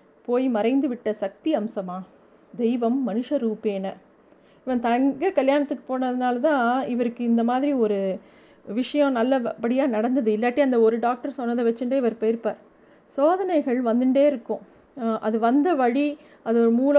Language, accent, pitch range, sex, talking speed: Tamil, native, 220-265 Hz, female, 125 wpm